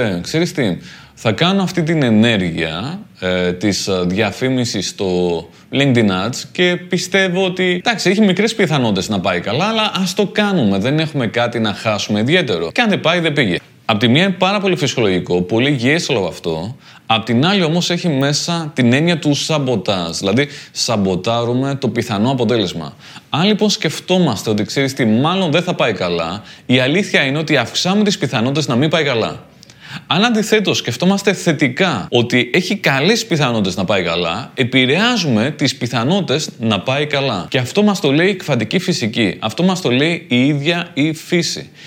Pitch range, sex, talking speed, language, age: 115-180 Hz, male, 170 wpm, Greek, 20-39